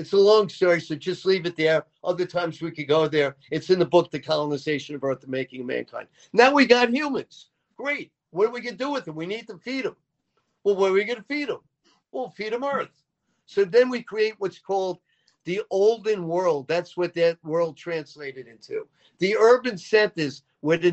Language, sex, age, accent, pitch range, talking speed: English, male, 50-69, American, 165-215 Hz, 220 wpm